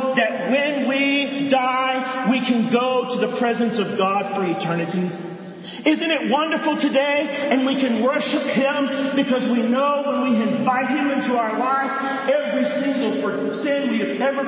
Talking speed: 160 wpm